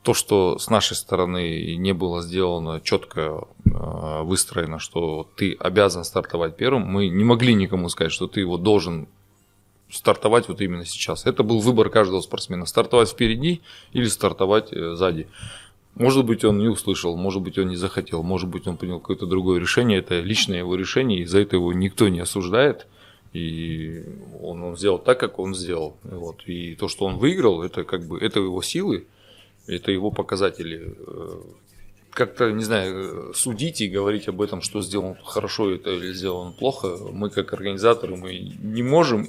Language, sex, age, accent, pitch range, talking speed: Russian, male, 20-39, native, 90-110 Hz, 165 wpm